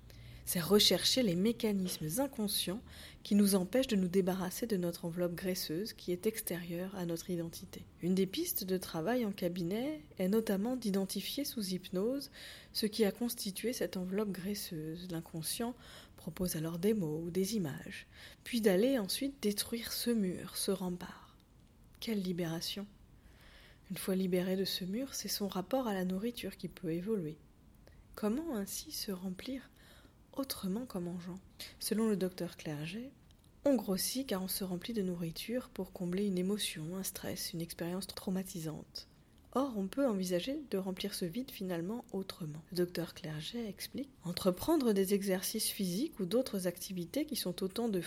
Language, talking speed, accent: French, 160 wpm, French